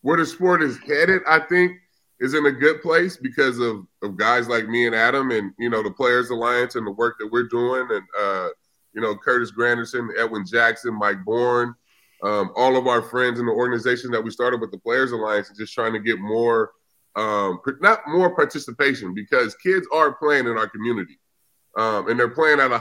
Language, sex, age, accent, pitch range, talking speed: English, female, 20-39, American, 115-135 Hz, 210 wpm